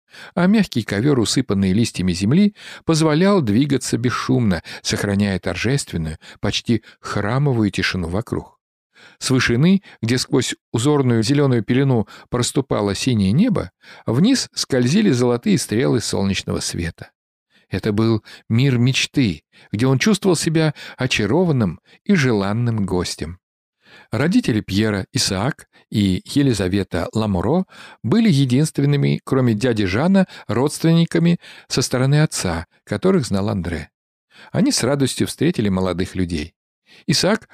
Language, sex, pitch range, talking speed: Russian, male, 100-150 Hz, 110 wpm